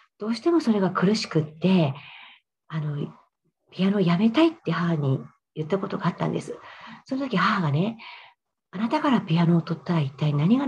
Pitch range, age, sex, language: 165-230 Hz, 40-59, female, Japanese